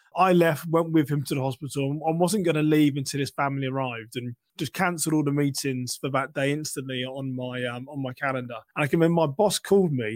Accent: British